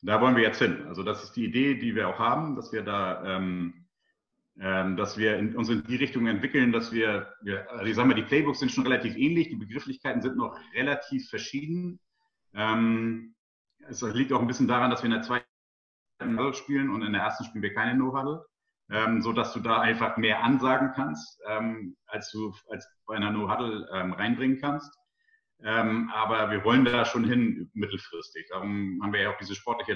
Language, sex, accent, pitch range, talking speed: German, male, German, 105-130 Hz, 210 wpm